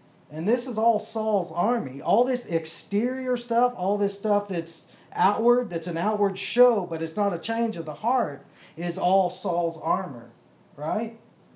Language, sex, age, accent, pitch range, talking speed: English, male, 40-59, American, 155-225 Hz, 165 wpm